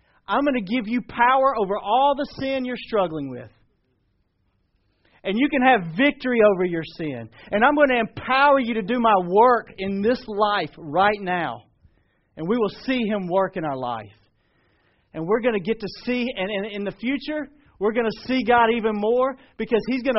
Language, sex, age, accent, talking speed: English, male, 40-59, American, 195 wpm